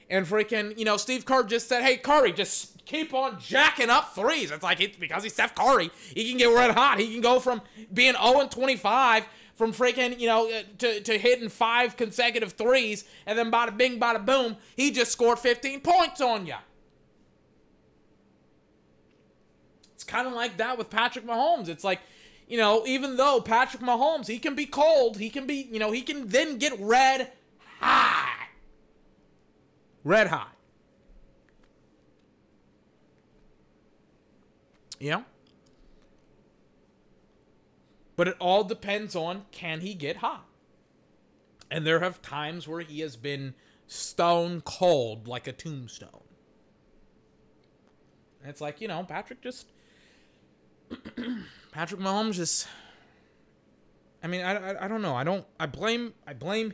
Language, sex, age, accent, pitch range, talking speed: English, male, 20-39, American, 185-245 Hz, 145 wpm